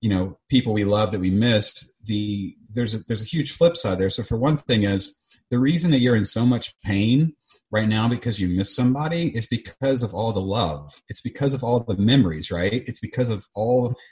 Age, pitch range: 30-49, 100-125 Hz